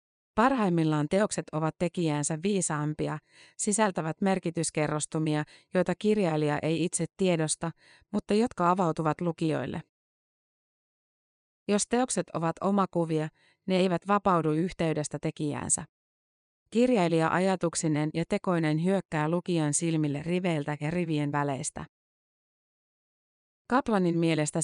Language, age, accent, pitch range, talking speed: Finnish, 30-49, native, 155-185 Hz, 90 wpm